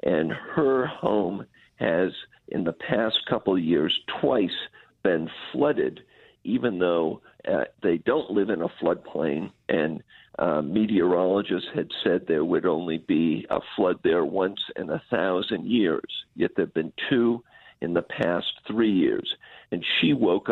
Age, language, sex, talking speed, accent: 50-69, English, male, 150 wpm, American